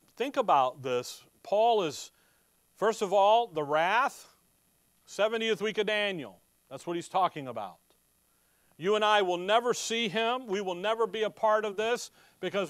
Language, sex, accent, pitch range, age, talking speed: English, male, American, 180-225 Hz, 40-59, 165 wpm